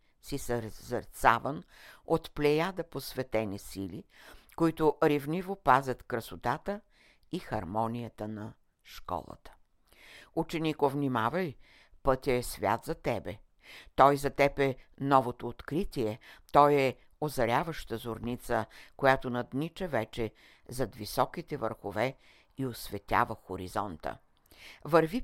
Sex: female